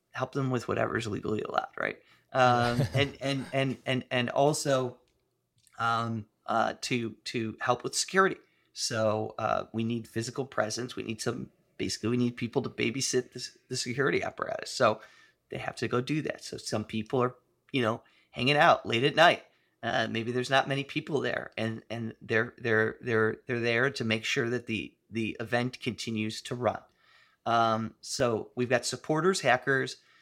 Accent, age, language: American, 30-49, English